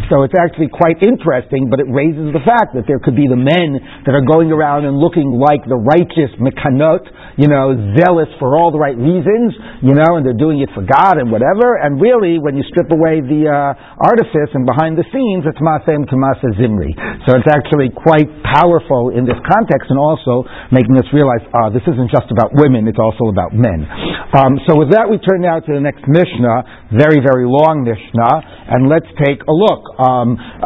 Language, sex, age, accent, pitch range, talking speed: English, male, 60-79, American, 130-160 Hz, 205 wpm